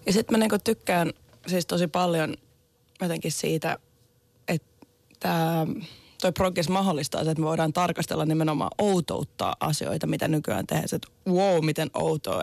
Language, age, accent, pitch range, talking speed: Finnish, 20-39, native, 155-175 Hz, 135 wpm